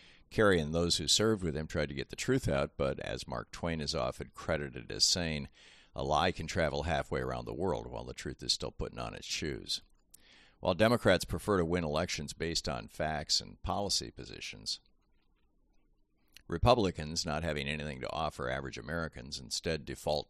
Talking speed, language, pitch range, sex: 180 wpm, English, 70-85 Hz, male